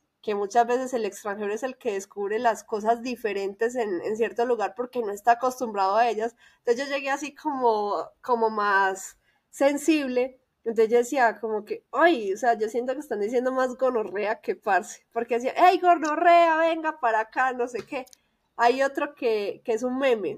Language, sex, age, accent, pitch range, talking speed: Spanish, female, 20-39, Colombian, 225-280 Hz, 190 wpm